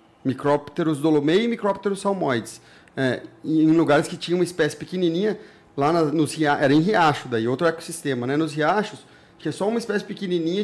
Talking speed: 170 wpm